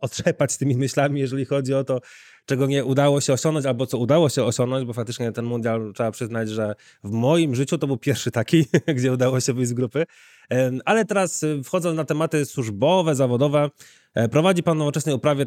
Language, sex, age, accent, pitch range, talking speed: Polish, male, 20-39, native, 120-145 Hz, 190 wpm